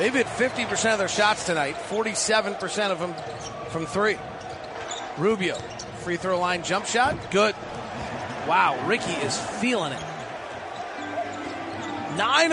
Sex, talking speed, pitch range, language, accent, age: male, 115 wpm, 195-250 Hz, English, American, 40-59